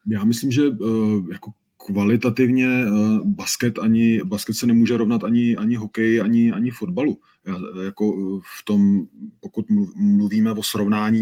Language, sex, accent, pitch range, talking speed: Czech, male, native, 105-115 Hz, 150 wpm